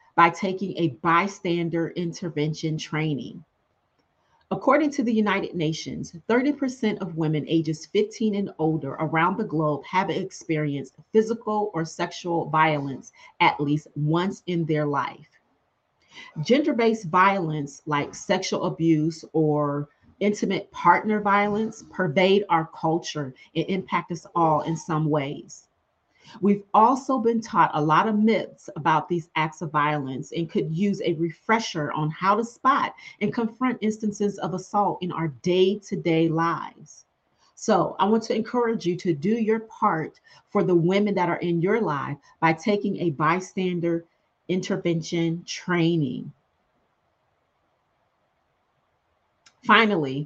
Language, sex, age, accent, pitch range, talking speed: English, female, 40-59, American, 160-205 Hz, 130 wpm